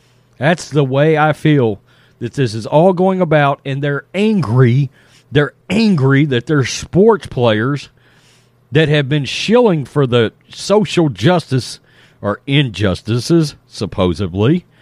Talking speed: 125 wpm